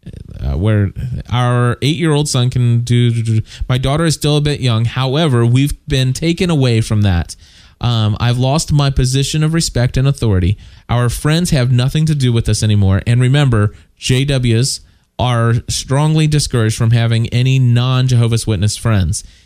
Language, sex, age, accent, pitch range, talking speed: English, male, 20-39, American, 110-135 Hz, 170 wpm